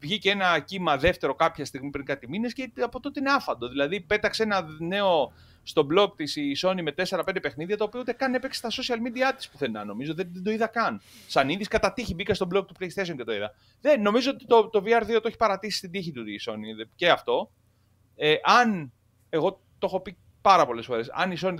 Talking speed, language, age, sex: 230 wpm, Greek, 30-49, male